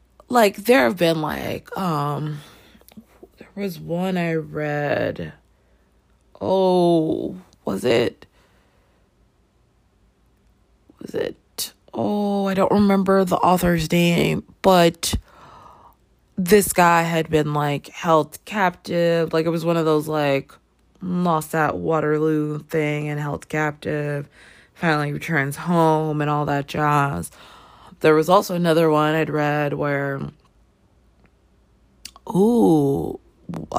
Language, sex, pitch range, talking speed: English, female, 145-170 Hz, 110 wpm